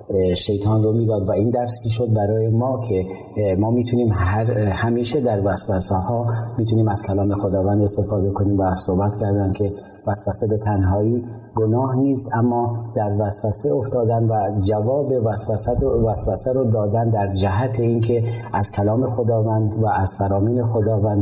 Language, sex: Persian, male